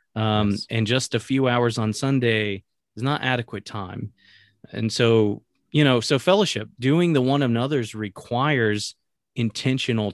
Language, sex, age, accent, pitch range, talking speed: English, male, 30-49, American, 110-135 Hz, 140 wpm